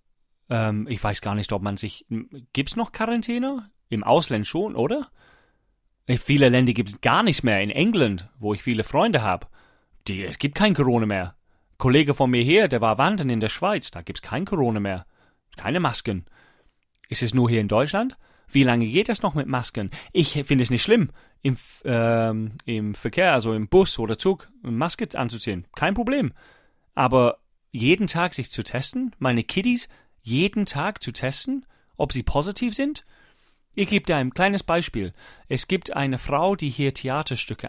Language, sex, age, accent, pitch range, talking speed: German, male, 30-49, German, 105-150 Hz, 180 wpm